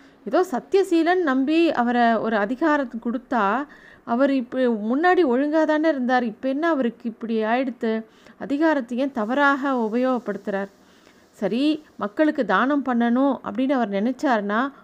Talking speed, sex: 115 wpm, female